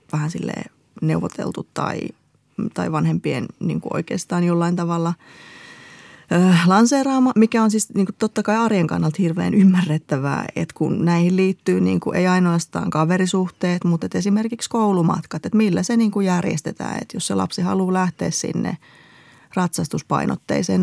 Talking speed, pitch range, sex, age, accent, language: 145 wpm, 165-195 Hz, female, 20-39, native, Finnish